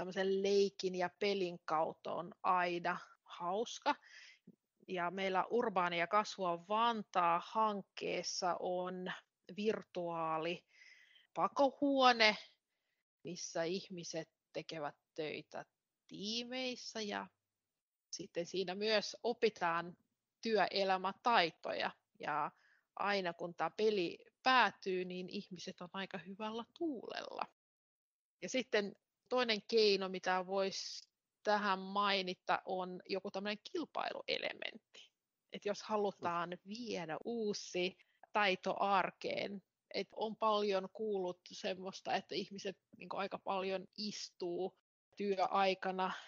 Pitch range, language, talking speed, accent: 180-225 Hz, Finnish, 90 wpm, native